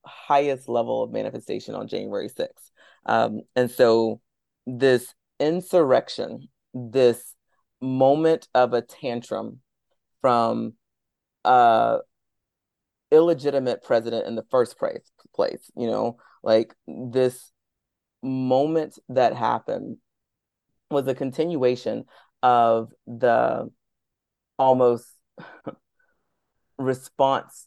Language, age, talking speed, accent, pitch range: English, 30-49, 85 wpm, American, 115-140 Hz